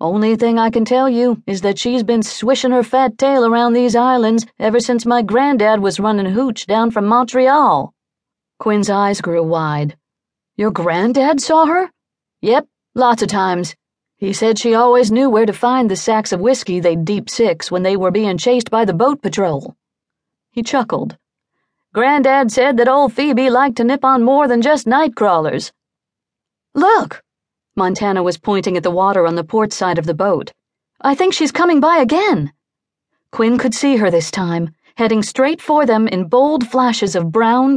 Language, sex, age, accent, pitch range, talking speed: English, female, 40-59, American, 195-255 Hz, 180 wpm